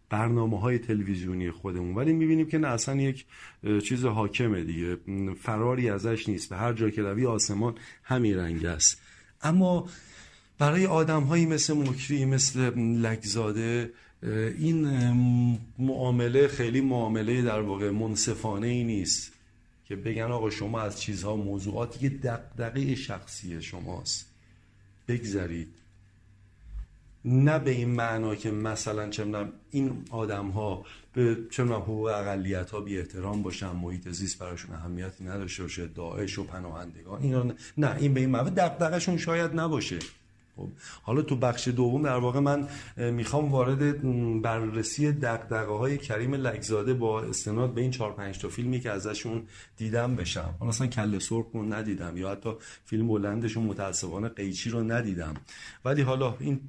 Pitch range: 105-130 Hz